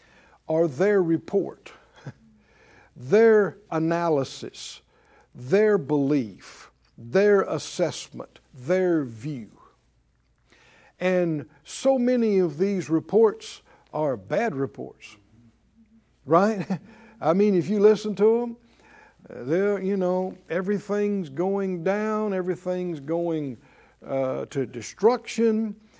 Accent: American